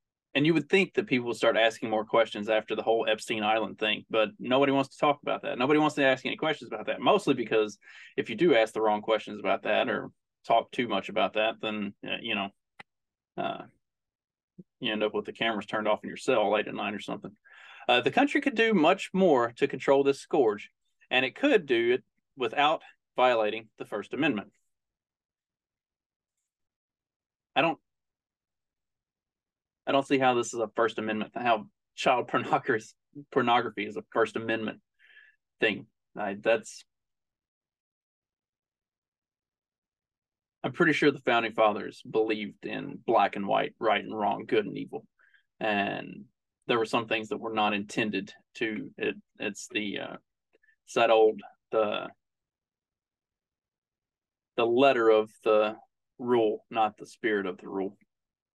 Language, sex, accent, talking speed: English, male, American, 160 wpm